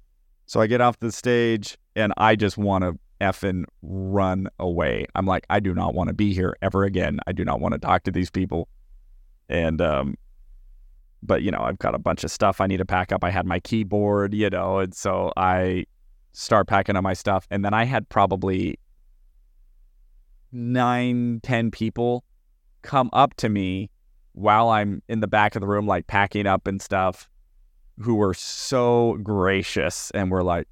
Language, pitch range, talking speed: English, 95-115 Hz, 190 wpm